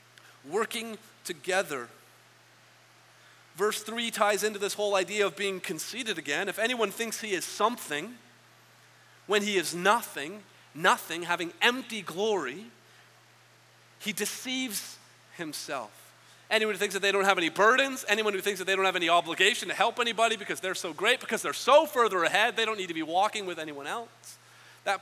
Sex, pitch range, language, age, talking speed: male, 185-225 Hz, English, 40-59, 170 wpm